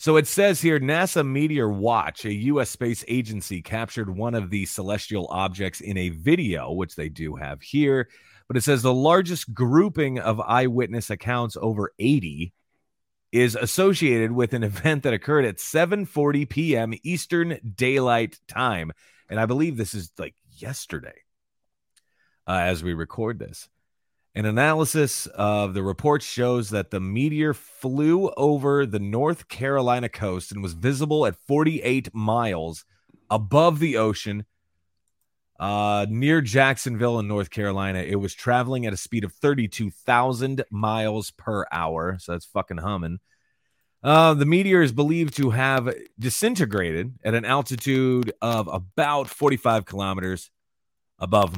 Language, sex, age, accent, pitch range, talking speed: English, male, 30-49, American, 100-140 Hz, 140 wpm